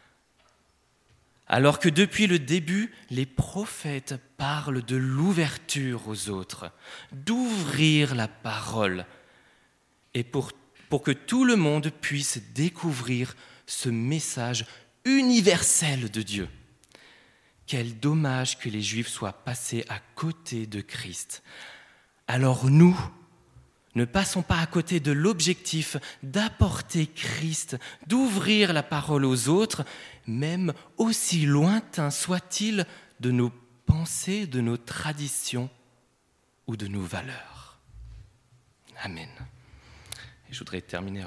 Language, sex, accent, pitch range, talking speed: French, male, French, 110-155 Hz, 110 wpm